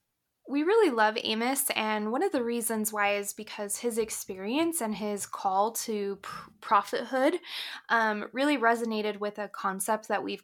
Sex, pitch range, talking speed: female, 210-270 Hz, 155 wpm